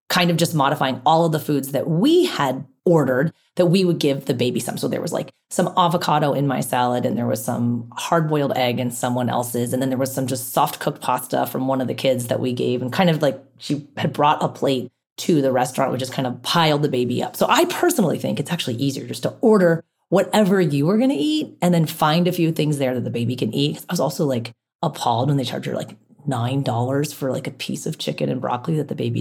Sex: female